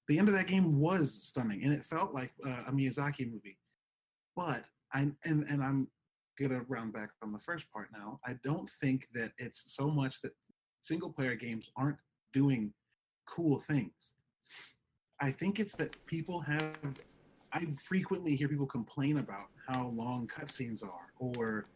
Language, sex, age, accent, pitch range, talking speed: English, male, 30-49, American, 125-160 Hz, 165 wpm